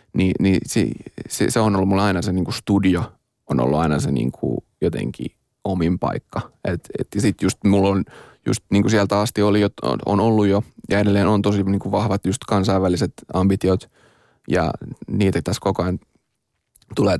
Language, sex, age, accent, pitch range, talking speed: Finnish, male, 20-39, native, 95-115 Hz, 160 wpm